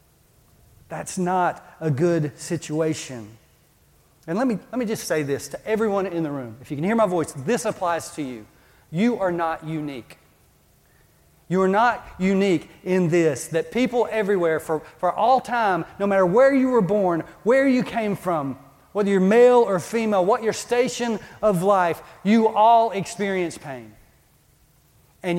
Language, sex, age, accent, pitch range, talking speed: English, male, 40-59, American, 140-190 Hz, 165 wpm